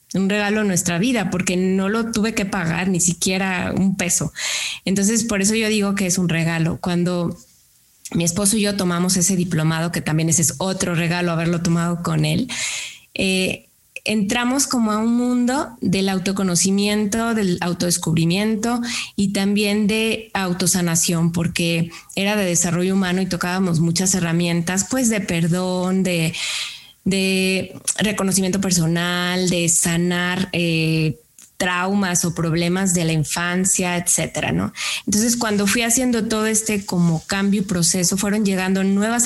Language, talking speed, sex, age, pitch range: Spanish, 145 wpm, female, 20-39, 175-205 Hz